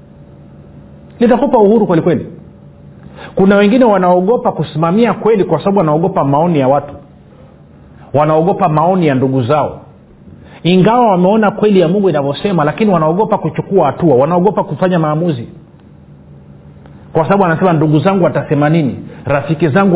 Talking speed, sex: 130 wpm, male